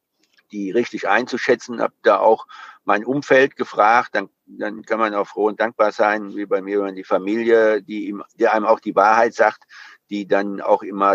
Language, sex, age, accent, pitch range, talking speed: German, male, 50-69, German, 105-125 Hz, 195 wpm